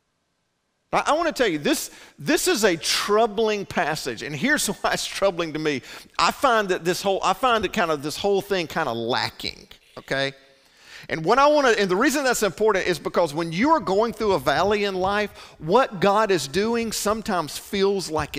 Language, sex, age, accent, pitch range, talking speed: English, male, 50-69, American, 165-230 Hz, 205 wpm